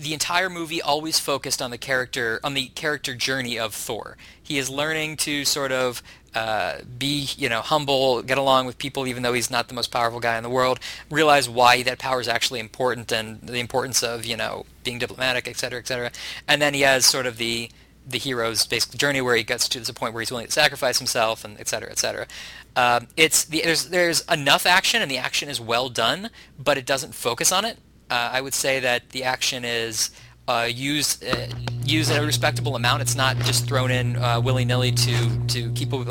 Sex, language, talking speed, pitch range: male, English, 225 wpm, 120-145 Hz